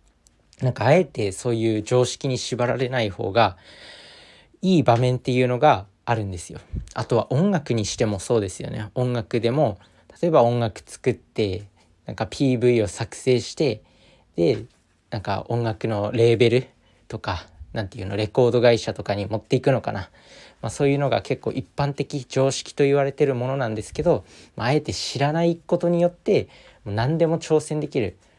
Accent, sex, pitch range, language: native, male, 105-140 Hz, Japanese